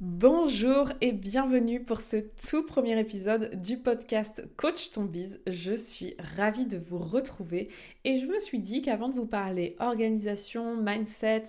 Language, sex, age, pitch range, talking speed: French, female, 20-39, 200-250 Hz, 155 wpm